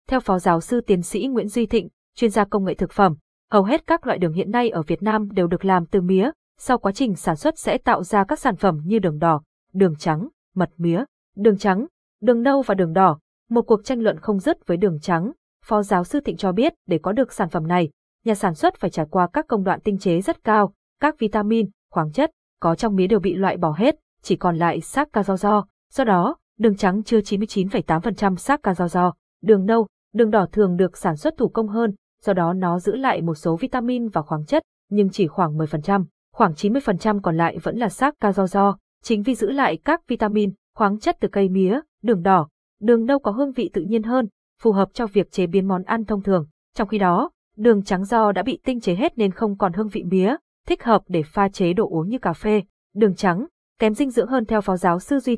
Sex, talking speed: female, 240 wpm